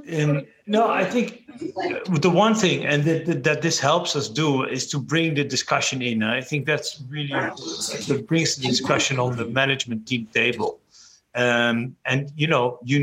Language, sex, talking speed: English, male, 180 wpm